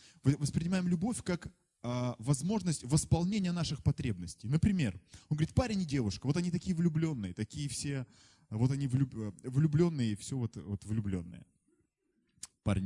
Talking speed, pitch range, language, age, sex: 135 wpm, 105-160 Hz, Russian, 20-39, male